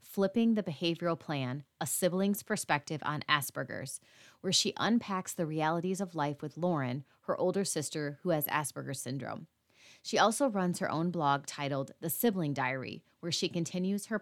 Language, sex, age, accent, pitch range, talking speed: English, female, 30-49, American, 165-220 Hz, 165 wpm